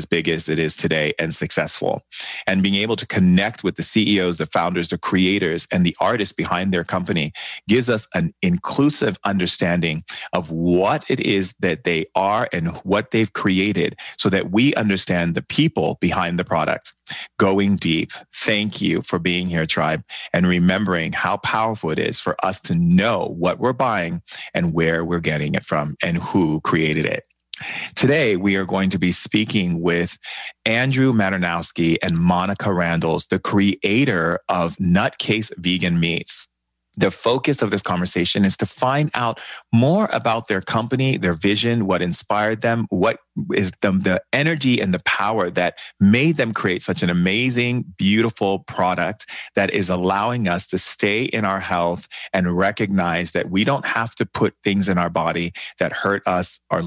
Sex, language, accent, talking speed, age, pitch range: male, English, American, 170 wpm, 30-49, 85-110 Hz